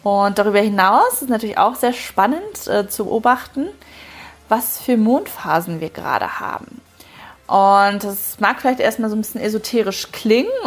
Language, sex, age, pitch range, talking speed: German, female, 30-49, 205-255 Hz, 155 wpm